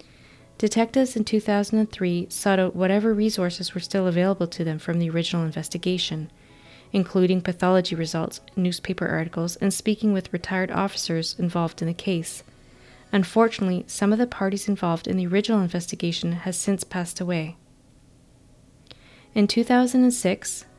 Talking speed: 135 wpm